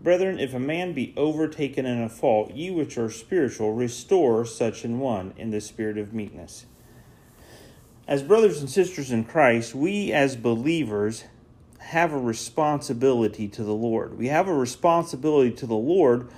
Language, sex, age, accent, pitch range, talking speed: English, male, 40-59, American, 120-155 Hz, 160 wpm